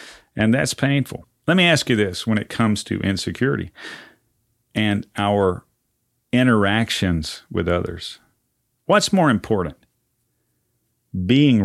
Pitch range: 100-120 Hz